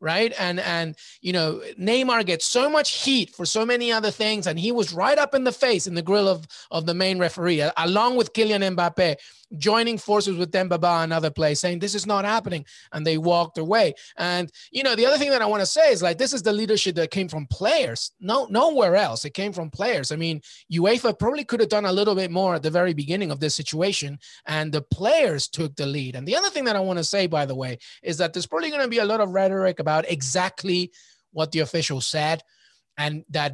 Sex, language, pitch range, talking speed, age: male, English, 160-210 Hz, 240 wpm, 30-49